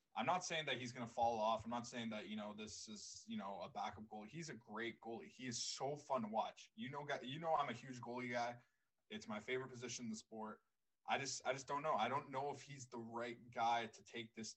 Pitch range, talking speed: 115-140 Hz, 270 wpm